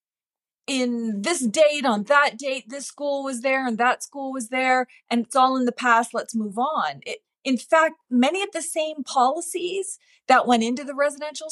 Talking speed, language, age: 190 wpm, English, 30-49